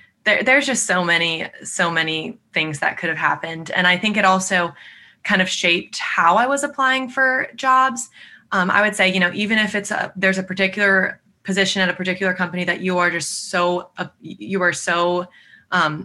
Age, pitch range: 20-39, 170-195 Hz